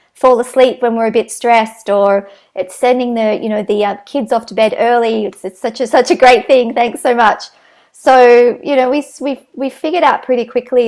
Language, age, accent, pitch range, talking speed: English, 40-59, Australian, 200-240 Hz, 225 wpm